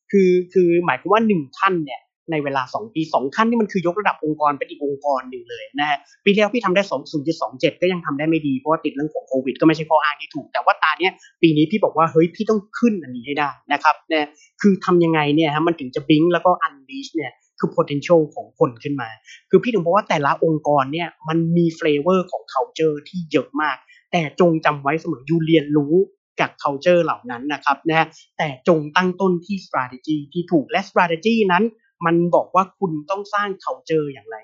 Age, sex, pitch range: 30-49, male, 155-200 Hz